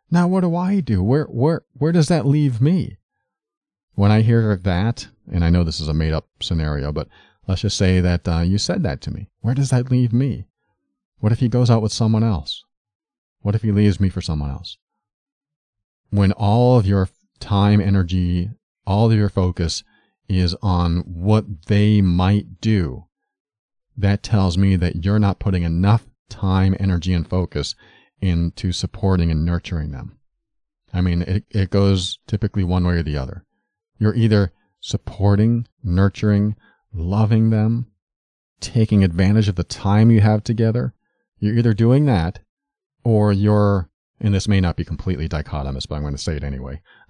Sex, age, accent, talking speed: male, 40-59, American, 170 wpm